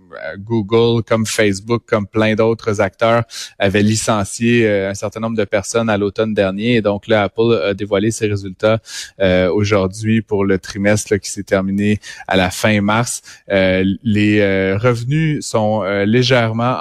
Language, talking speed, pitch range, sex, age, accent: French, 145 wpm, 100-115 Hz, male, 30-49, Canadian